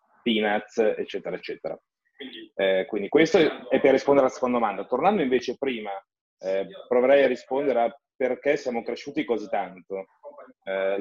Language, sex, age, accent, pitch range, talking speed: Italian, male, 30-49, native, 115-130 Hz, 140 wpm